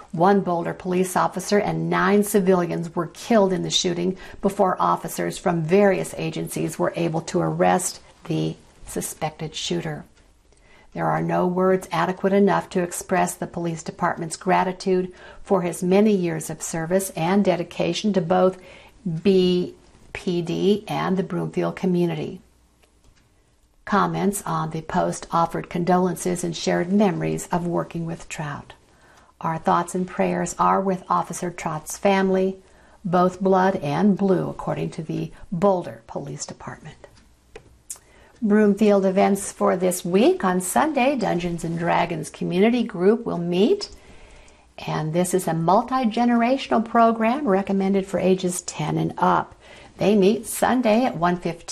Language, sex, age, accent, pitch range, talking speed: English, female, 60-79, American, 170-195 Hz, 130 wpm